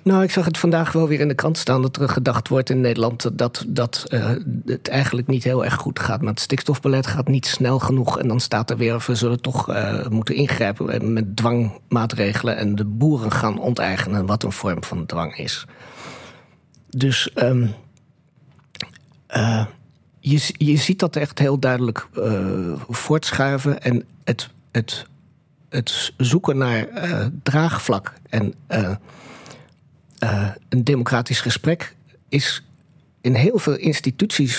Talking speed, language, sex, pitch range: 150 wpm, Dutch, male, 115-145 Hz